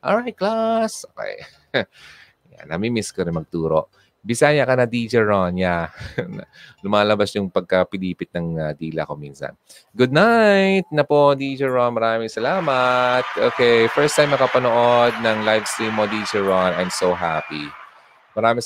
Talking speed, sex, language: 140 wpm, male, Filipino